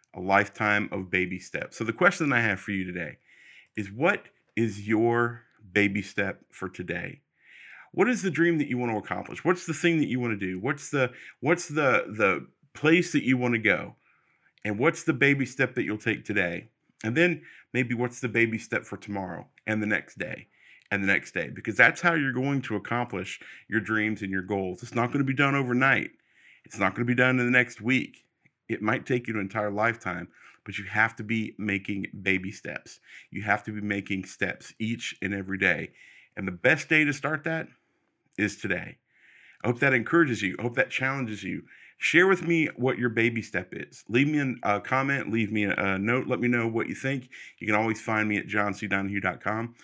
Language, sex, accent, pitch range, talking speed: English, male, American, 100-130 Hz, 210 wpm